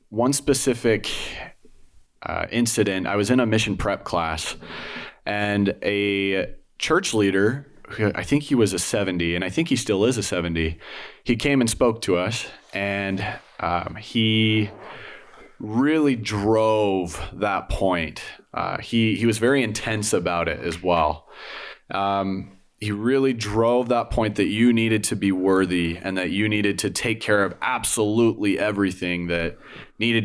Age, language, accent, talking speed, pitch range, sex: 30-49, English, American, 150 wpm, 95-110 Hz, male